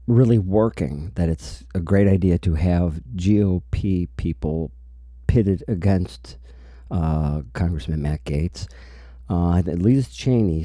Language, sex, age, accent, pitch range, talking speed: English, male, 50-69, American, 75-95 Hz, 125 wpm